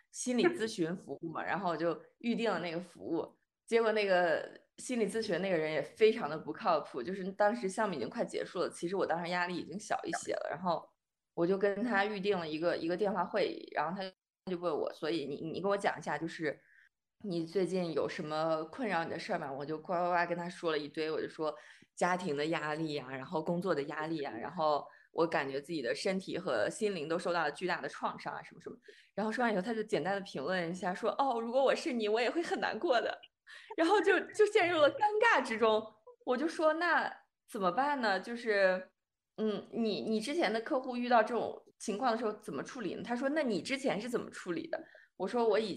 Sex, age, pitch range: female, 20-39, 170-230 Hz